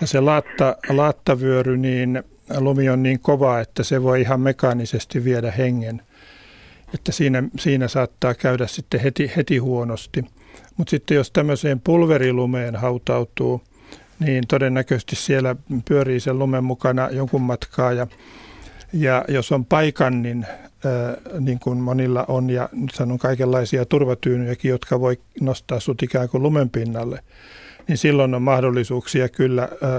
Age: 50-69